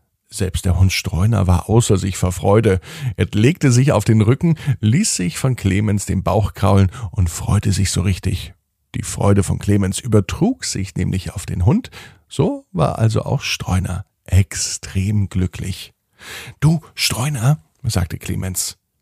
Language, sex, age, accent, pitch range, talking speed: German, male, 50-69, German, 95-120 Hz, 150 wpm